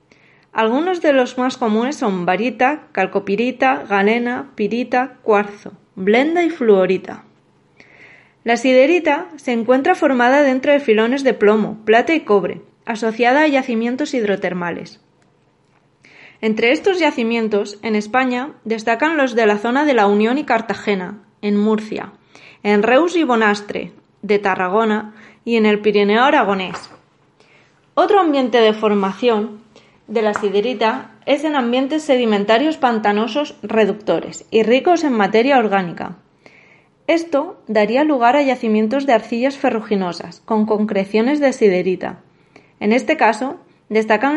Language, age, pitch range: Spanish, 20-39, 210-265 Hz